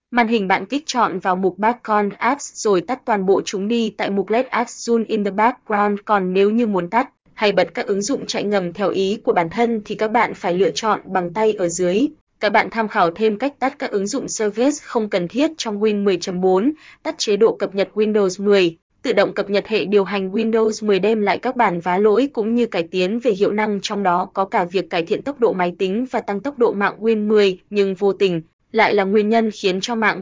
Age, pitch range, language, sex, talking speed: 20-39, 195-230 Hz, Vietnamese, female, 245 wpm